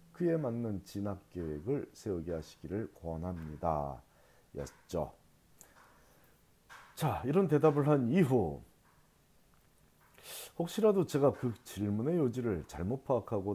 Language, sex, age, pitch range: Korean, male, 40-59, 100-140 Hz